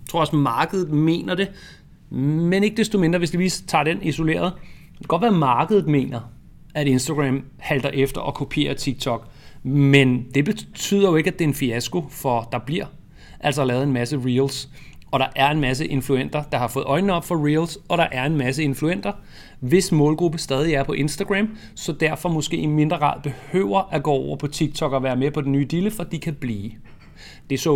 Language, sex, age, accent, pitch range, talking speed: Danish, male, 30-49, native, 135-175 Hz, 210 wpm